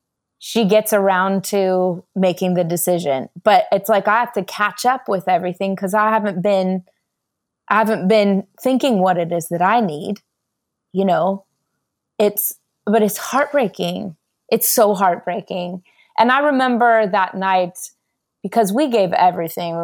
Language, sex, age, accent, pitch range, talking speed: English, female, 20-39, American, 180-210 Hz, 150 wpm